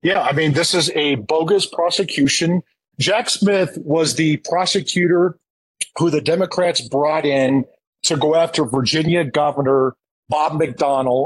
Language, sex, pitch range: English, male, 135-170 Hz